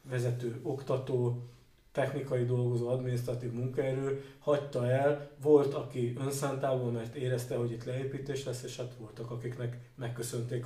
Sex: male